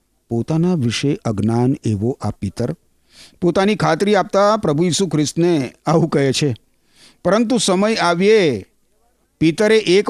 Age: 50-69